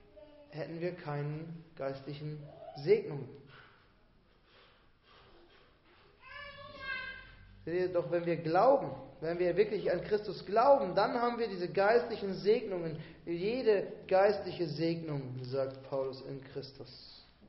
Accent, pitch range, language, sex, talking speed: German, 140-180 Hz, German, male, 95 wpm